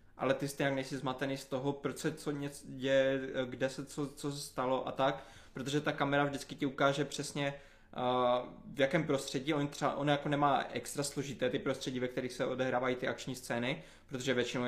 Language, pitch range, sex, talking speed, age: Czech, 125-140 Hz, male, 195 wpm, 20-39